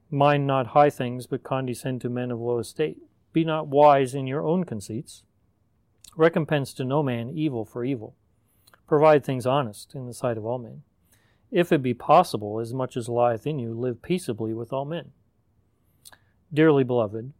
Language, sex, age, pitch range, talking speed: English, male, 40-59, 110-140 Hz, 175 wpm